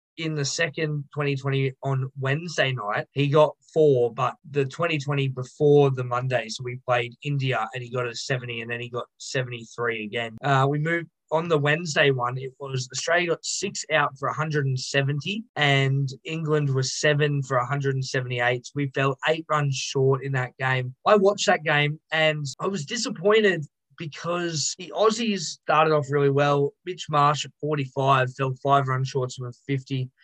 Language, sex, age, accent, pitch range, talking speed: English, male, 20-39, Australian, 130-155 Hz, 170 wpm